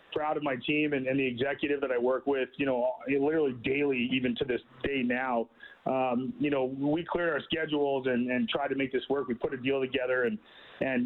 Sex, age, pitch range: male, 30-49, 130-155 Hz